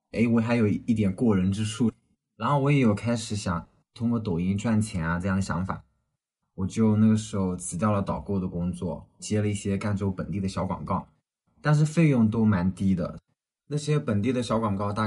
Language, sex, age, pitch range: Chinese, male, 20-39, 90-110 Hz